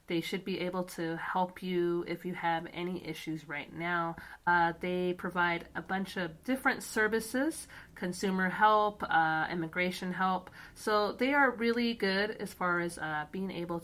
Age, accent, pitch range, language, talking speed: 30-49, American, 175-230 Hz, English, 165 wpm